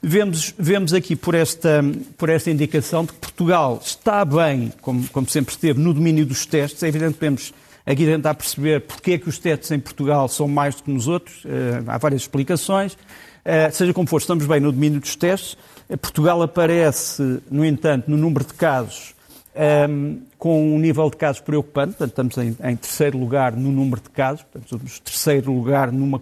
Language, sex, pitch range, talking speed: Portuguese, male, 140-170 Hz, 195 wpm